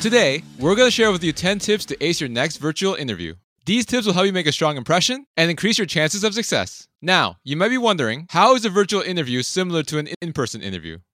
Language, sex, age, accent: English, male, 20-39, American